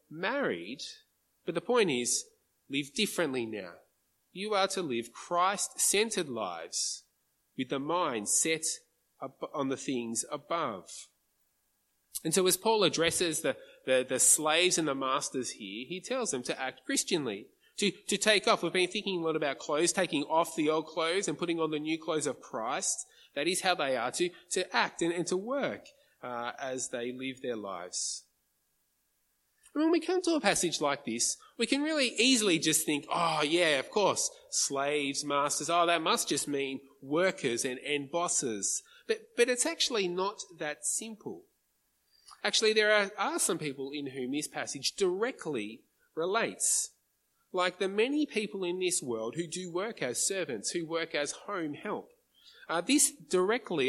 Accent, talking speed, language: Australian, 170 wpm, English